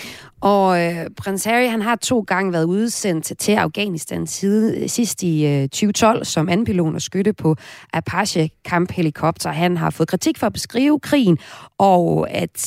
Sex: female